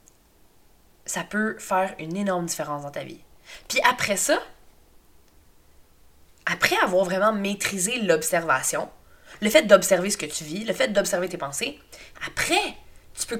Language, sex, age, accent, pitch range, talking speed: French, female, 20-39, Canadian, 170-220 Hz, 145 wpm